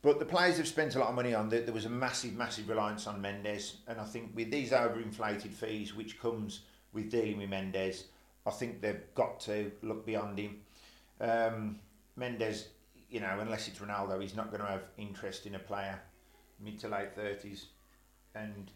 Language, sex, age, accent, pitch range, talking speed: English, male, 40-59, British, 100-115 Hz, 190 wpm